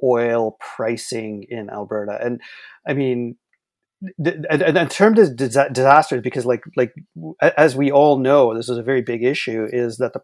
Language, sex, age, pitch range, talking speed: English, male, 30-49, 120-155 Hz, 175 wpm